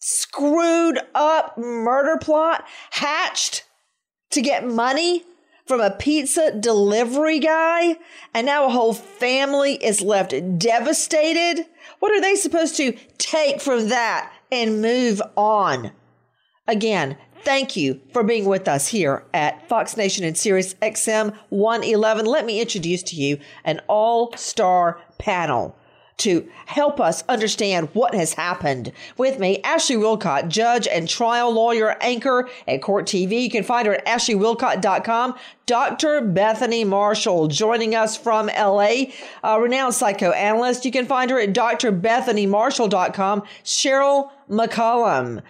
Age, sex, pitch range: 40-59, female, 210-275 Hz